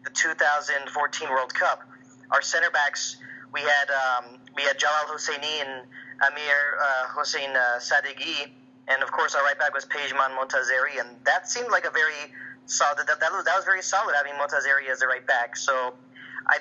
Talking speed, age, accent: 190 wpm, 30-49, American